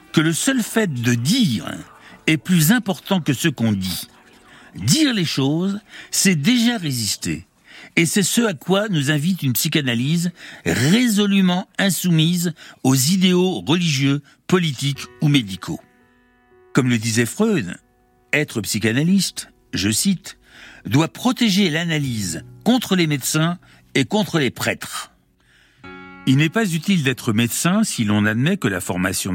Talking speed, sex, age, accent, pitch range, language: 135 wpm, male, 60-79, French, 125-190 Hz, French